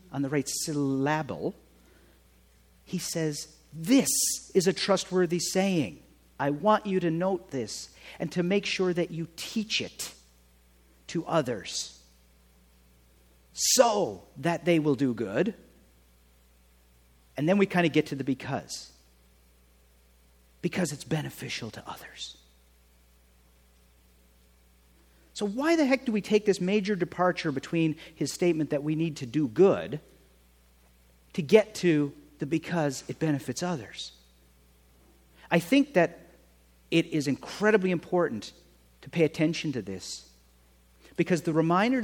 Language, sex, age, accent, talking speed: English, male, 50-69, American, 125 wpm